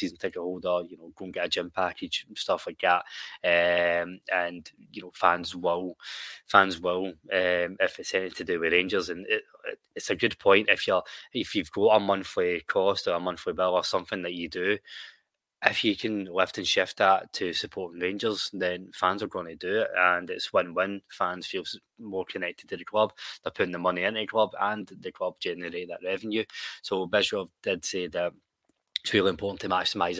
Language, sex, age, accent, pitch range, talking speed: English, male, 20-39, British, 85-100 Hz, 205 wpm